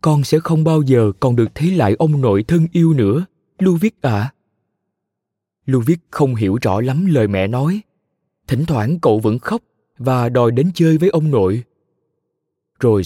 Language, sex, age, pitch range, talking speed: Vietnamese, male, 20-39, 115-160 Hz, 175 wpm